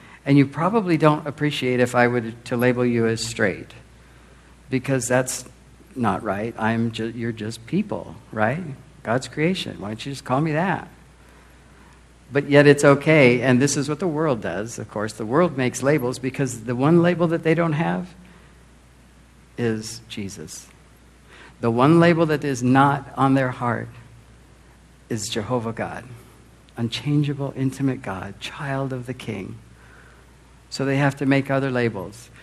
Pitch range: 110-140 Hz